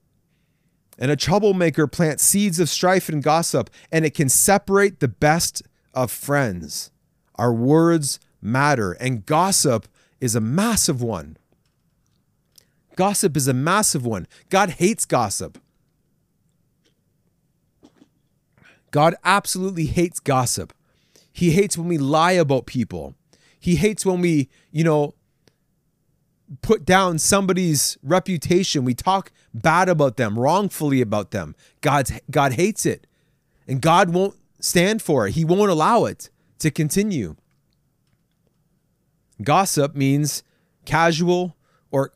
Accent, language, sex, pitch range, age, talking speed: American, English, male, 135-175 Hz, 30-49, 120 wpm